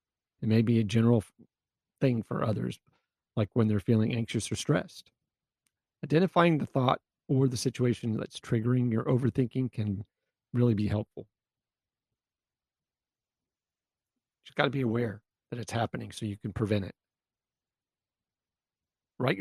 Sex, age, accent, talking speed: male, 40-59, American, 135 wpm